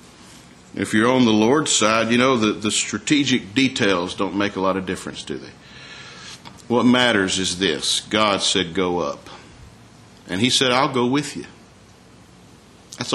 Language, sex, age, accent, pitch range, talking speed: English, male, 50-69, American, 90-125 Hz, 165 wpm